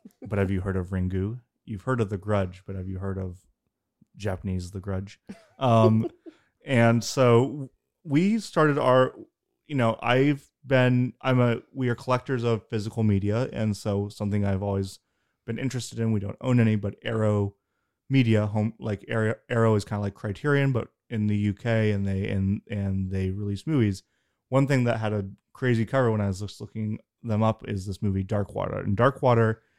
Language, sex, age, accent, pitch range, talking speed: English, male, 30-49, American, 100-115 Hz, 185 wpm